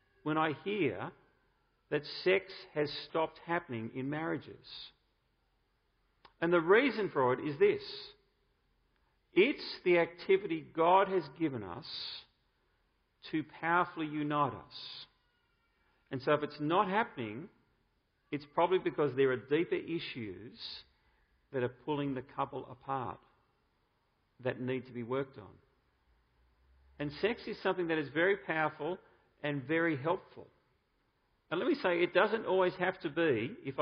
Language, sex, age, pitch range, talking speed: English, male, 50-69, 135-180 Hz, 135 wpm